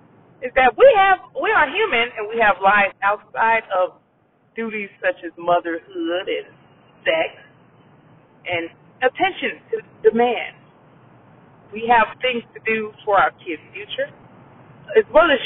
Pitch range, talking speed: 200-295 Hz, 135 wpm